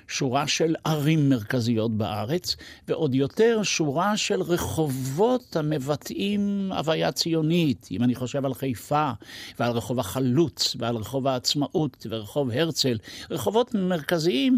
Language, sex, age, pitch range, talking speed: Hebrew, male, 60-79, 125-165 Hz, 115 wpm